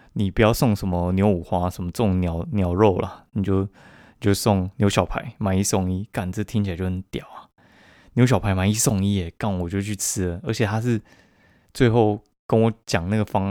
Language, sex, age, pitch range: Chinese, male, 20-39, 95-125 Hz